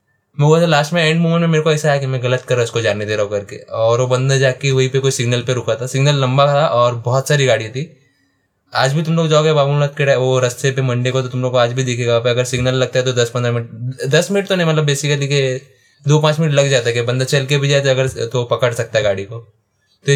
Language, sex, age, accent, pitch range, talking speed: Hindi, male, 20-39, native, 115-140 Hz, 275 wpm